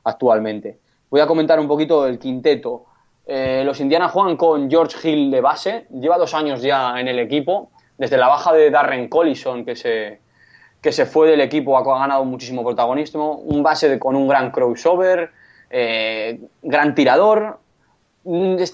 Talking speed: 165 wpm